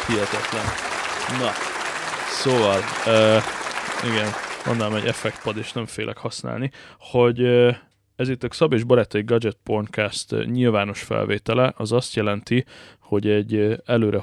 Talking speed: 120 wpm